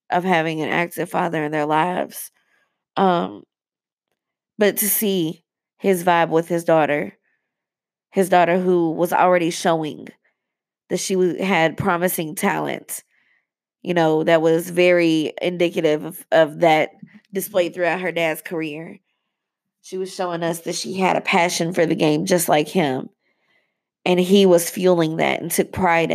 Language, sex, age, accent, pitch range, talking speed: English, female, 20-39, American, 160-185 Hz, 150 wpm